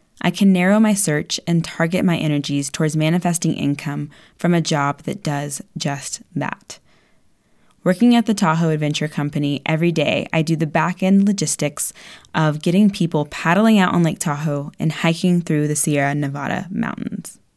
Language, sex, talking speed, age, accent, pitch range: English, female, 160 wpm, 20-39, American, 155-190 Hz